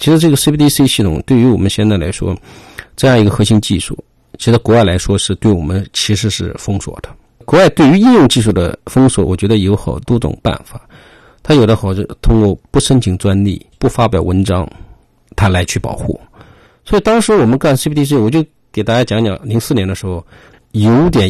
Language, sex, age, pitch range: Chinese, male, 50-69, 95-120 Hz